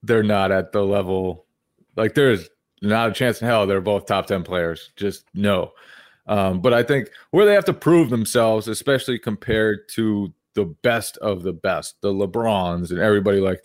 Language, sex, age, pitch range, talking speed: English, male, 20-39, 105-135 Hz, 185 wpm